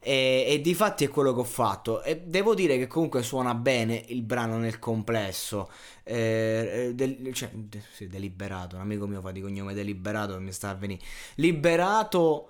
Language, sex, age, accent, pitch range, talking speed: Italian, male, 20-39, native, 110-155 Hz, 185 wpm